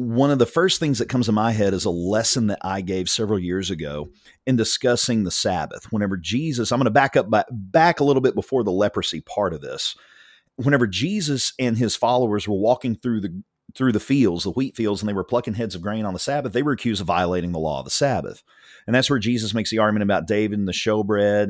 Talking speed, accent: 245 wpm, American